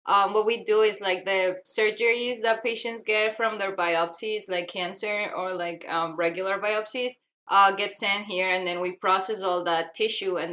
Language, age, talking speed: English, 20-39, 190 wpm